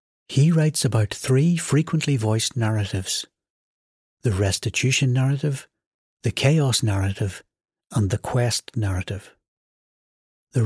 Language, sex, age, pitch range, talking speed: English, male, 60-79, 105-140 Hz, 100 wpm